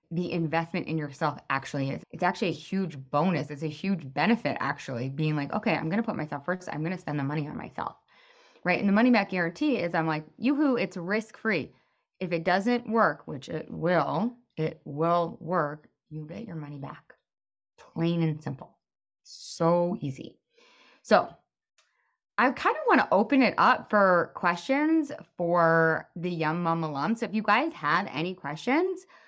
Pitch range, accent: 160-220 Hz, American